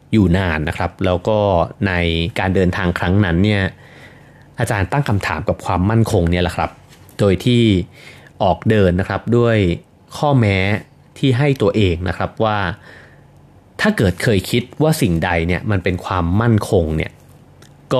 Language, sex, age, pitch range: Thai, male, 30-49, 85-115 Hz